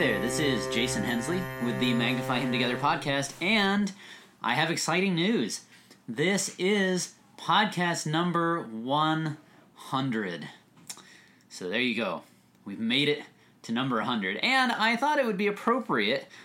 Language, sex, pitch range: English, male, 125-190 Hz